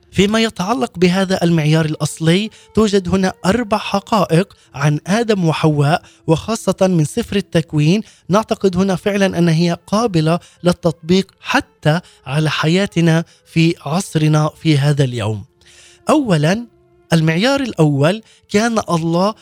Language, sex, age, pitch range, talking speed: Arabic, male, 20-39, 160-195 Hz, 110 wpm